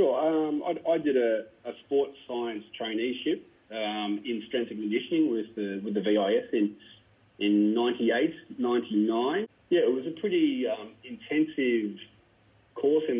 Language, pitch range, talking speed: English, 100-120 Hz, 140 wpm